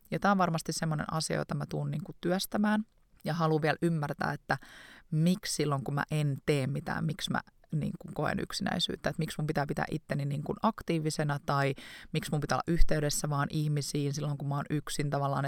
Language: Finnish